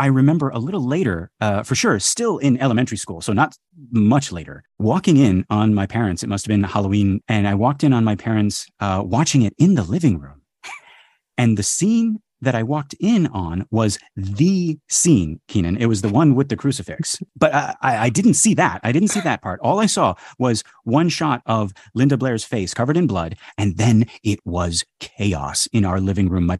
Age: 30-49